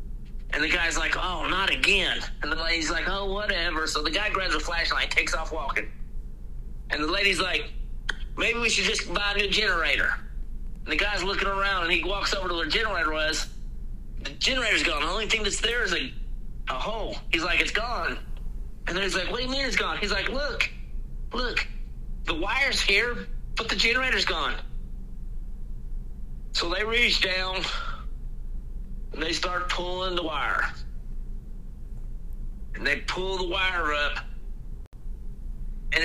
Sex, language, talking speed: male, English, 170 wpm